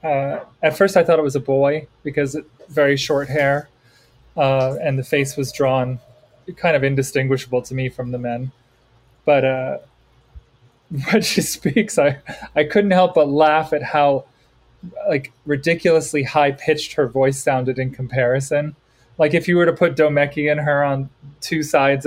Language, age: English, 20-39